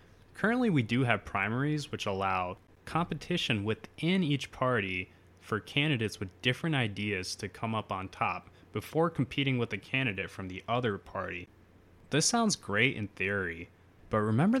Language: English